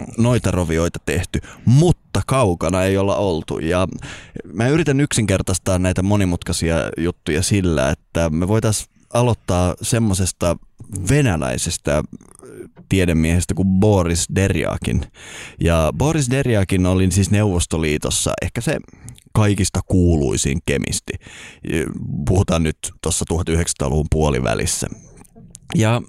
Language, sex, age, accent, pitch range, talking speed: Finnish, male, 20-39, native, 85-120 Hz, 100 wpm